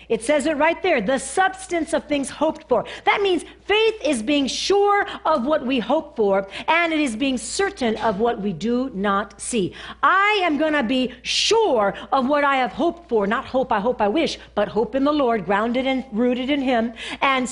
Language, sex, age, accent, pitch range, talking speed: English, female, 50-69, American, 230-340 Hz, 210 wpm